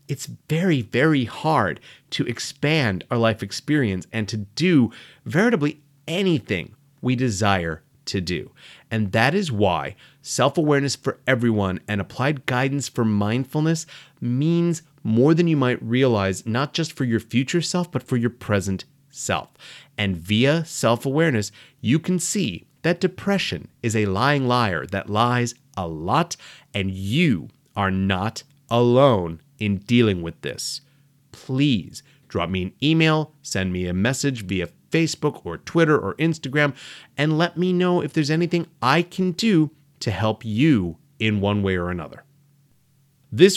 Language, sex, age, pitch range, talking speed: English, male, 30-49, 110-150 Hz, 145 wpm